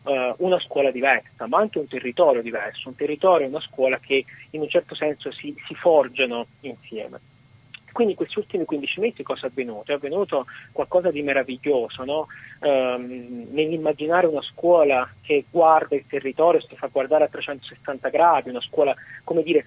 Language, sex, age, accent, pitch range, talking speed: Italian, male, 30-49, native, 130-155 Hz, 170 wpm